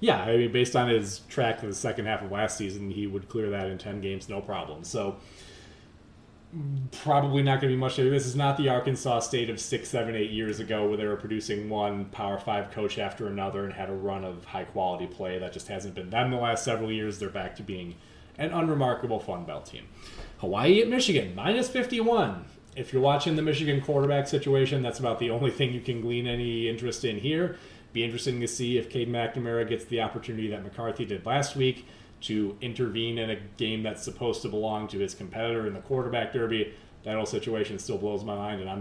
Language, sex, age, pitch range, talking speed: English, male, 30-49, 105-130 Hz, 220 wpm